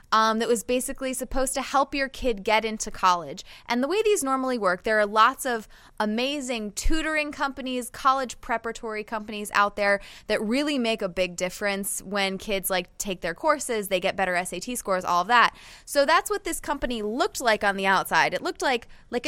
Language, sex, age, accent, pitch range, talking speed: English, female, 20-39, American, 200-255 Hz, 200 wpm